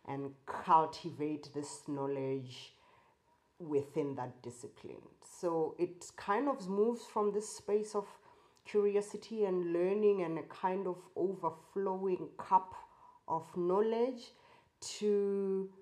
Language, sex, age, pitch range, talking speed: English, female, 30-49, 185-275 Hz, 105 wpm